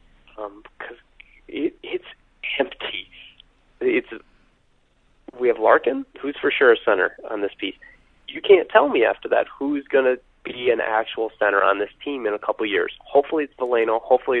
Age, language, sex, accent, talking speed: 30-49, English, male, American, 170 wpm